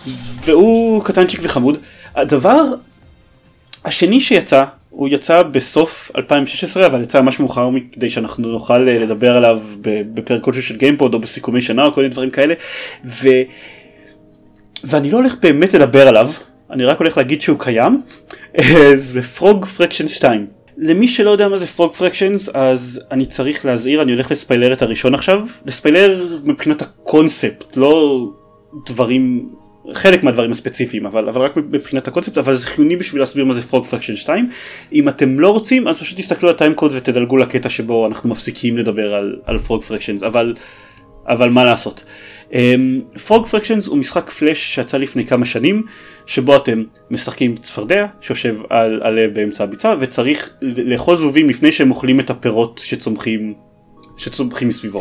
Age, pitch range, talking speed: 20-39, 120-170 Hz, 155 wpm